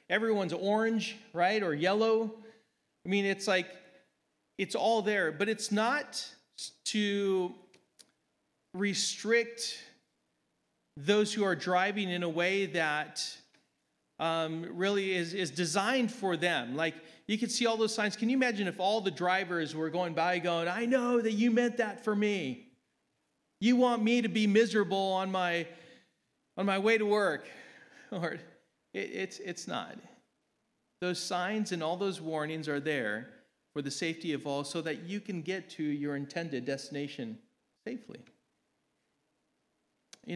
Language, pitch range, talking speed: English, 160-215 Hz, 150 wpm